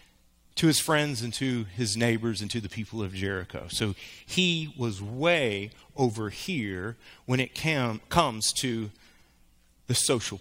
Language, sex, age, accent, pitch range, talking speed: English, male, 30-49, American, 110-155 Hz, 145 wpm